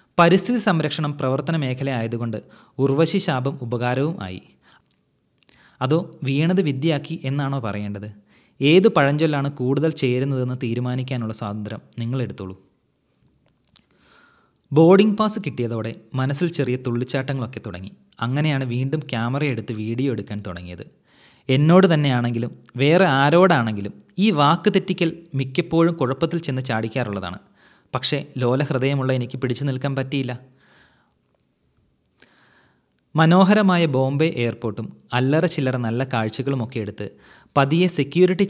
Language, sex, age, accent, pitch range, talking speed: Malayalam, male, 30-49, native, 120-160 Hz, 95 wpm